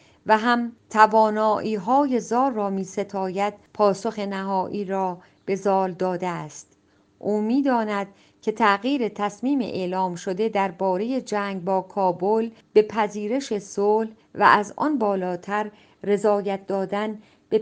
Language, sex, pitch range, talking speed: Persian, female, 185-215 Hz, 125 wpm